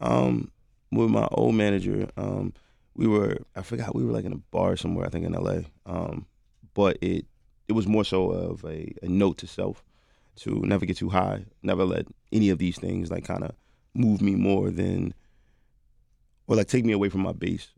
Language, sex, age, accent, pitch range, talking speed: English, male, 20-39, American, 85-100 Hz, 205 wpm